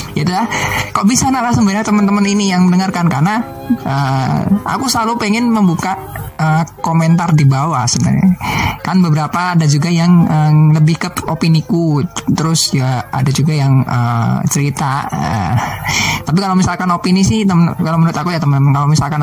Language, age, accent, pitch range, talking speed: Indonesian, 20-39, native, 150-185 Hz, 155 wpm